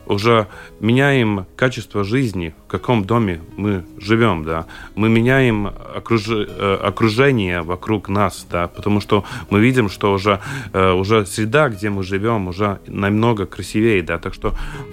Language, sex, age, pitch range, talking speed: Russian, male, 30-49, 95-120 Hz, 135 wpm